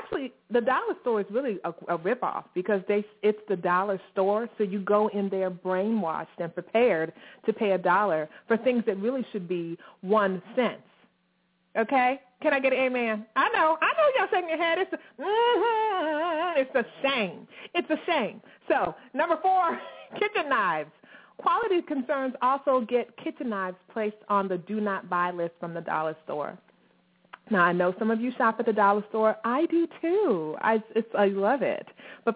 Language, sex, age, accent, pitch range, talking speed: English, female, 30-49, American, 190-275 Hz, 180 wpm